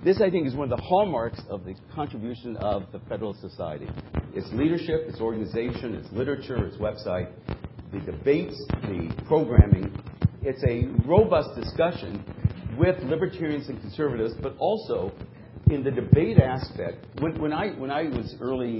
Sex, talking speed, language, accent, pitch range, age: male, 155 wpm, English, American, 110-135 Hz, 50-69